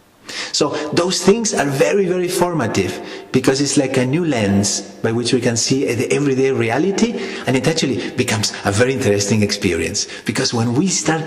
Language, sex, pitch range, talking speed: English, male, 100-130 Hz, 175 wpm